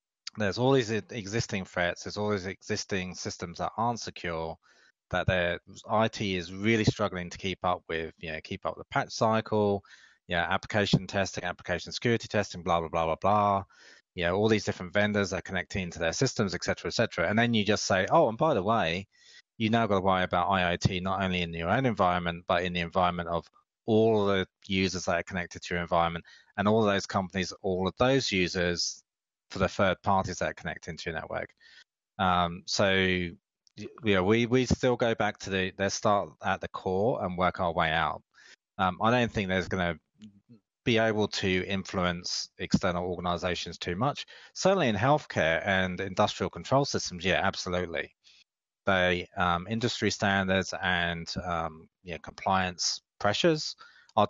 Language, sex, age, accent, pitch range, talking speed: English, male, 30-49, British, 90-110 Hz, 185 wpm